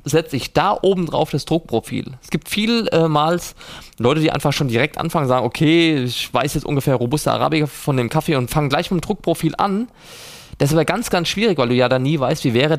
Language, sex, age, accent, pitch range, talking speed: German, male, 20-39, German, 125-160 Hz, 225 wpm